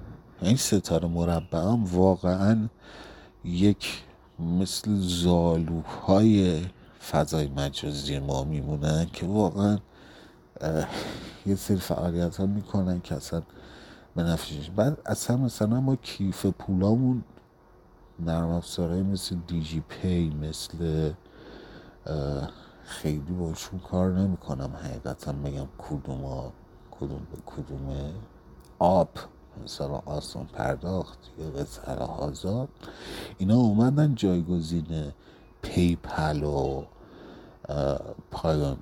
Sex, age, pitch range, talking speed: male, 50-69, 75-95 Hz, 95 wpm